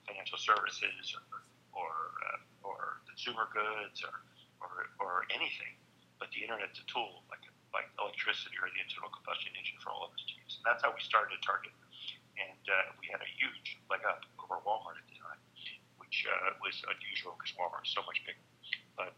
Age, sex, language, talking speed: 50-69, male, English, 185 wpm